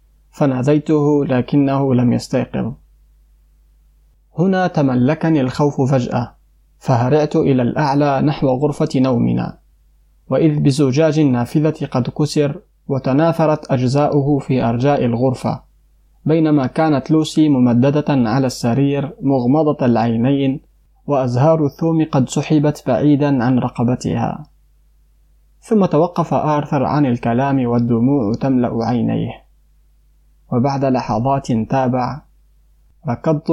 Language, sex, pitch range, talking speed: Arabic, male, 120-150 Hz, 90 wpm